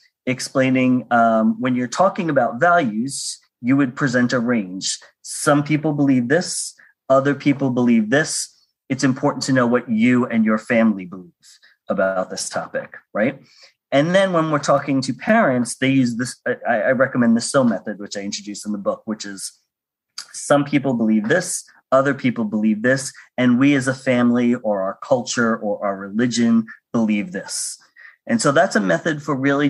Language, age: English, 30-49